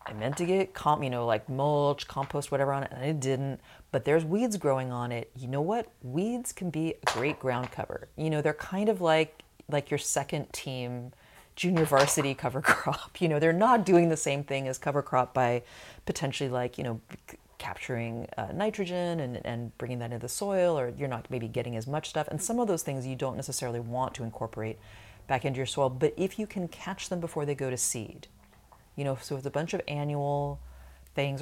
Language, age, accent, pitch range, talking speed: English, 30-49, American, 125-165 Hz, 220 wpm